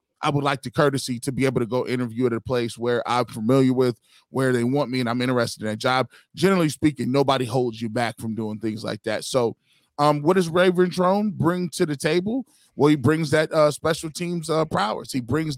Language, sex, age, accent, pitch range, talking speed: English, male, 20-39, American, 125-155 Hz, 230 wpm